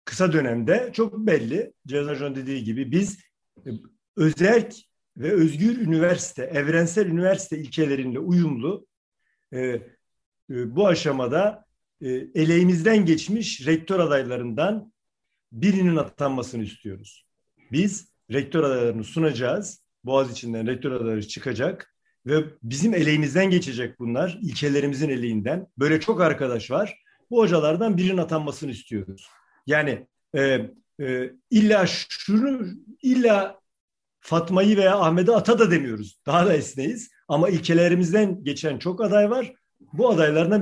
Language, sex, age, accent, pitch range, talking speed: Turkish, male, 50-69, native, 135-200 Hz, 105 wpm